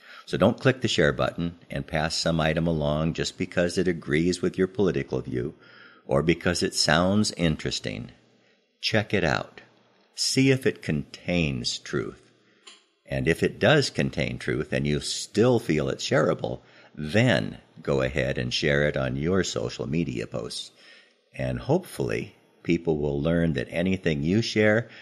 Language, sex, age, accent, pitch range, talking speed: English, male, 50-69, American, 70-95 Hz, 155 wpm